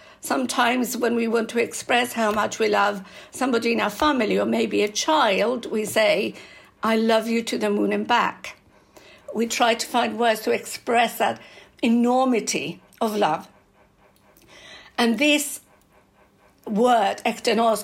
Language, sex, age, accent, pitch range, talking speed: English, female, 60-79, British, 210-255 Hz, 145 wpm